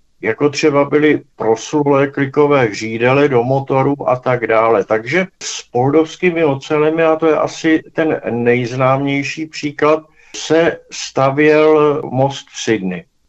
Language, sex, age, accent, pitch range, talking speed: Czech, male, 60-79, native, 120-150 Hz, 120 wpm